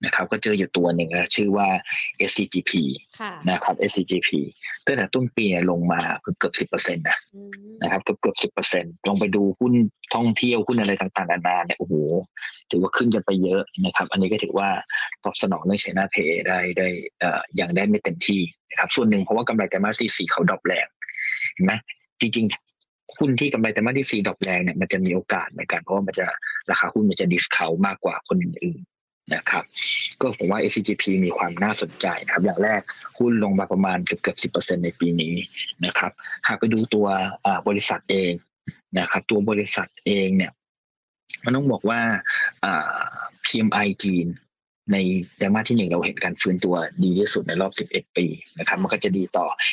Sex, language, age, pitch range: male, Thai, 20-39, 90-115 Hz